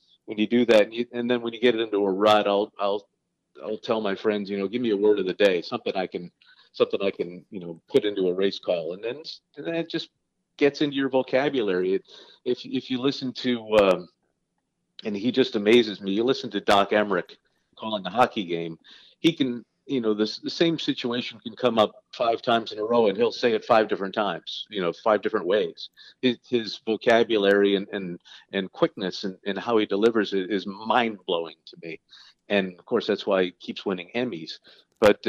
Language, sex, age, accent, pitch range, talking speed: English, male, 50-69, American, 100-130 Hz, 220 wpm